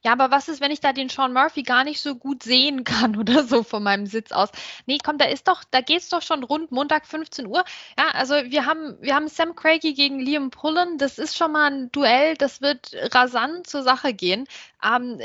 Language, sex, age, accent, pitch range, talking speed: German, female, 20-39, German, 245-310 Hz, 230 wpm